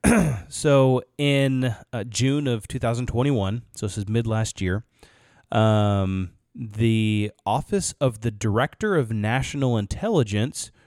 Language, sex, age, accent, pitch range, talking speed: English, male, 30-49, American, 110-130 Hz, 110 wpm